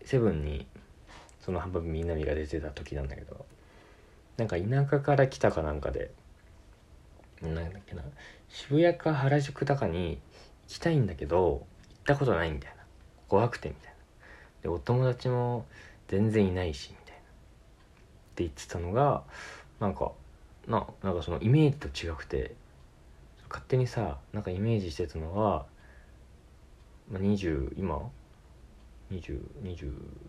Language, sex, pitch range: Japanese, male, 75-105 Hz